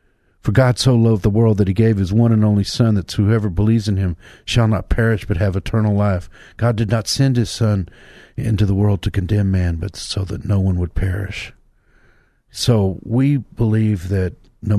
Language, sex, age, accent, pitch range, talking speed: English, male, 50-69, American, 95-115 Hz, 205 wpm